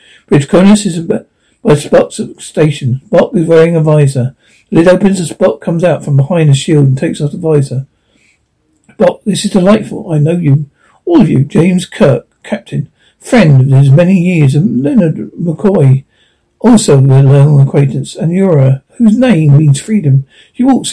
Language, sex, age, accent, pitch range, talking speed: English, male, 60-79, British, 145-185 Hz, 180 wpm